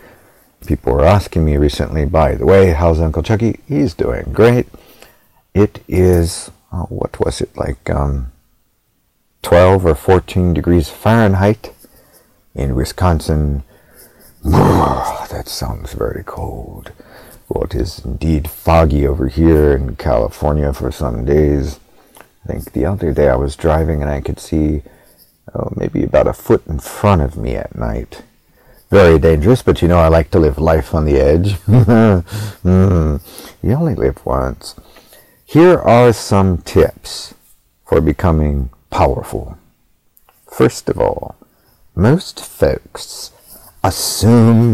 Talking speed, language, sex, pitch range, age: 130 wpm, English, male, 75-95 Hz, 50-69